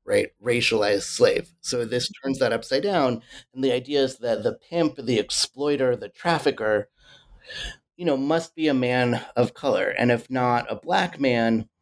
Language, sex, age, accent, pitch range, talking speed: English, male, 30-49, American, 115-145 Hz, 175 wpm